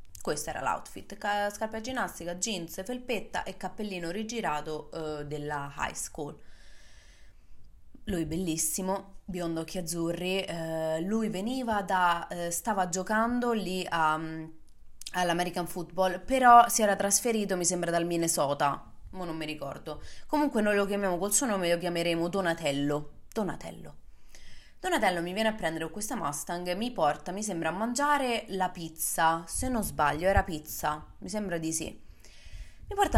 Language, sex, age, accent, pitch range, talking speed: Italian, female, 20-39, native, 155-195 Hz, 150 wpm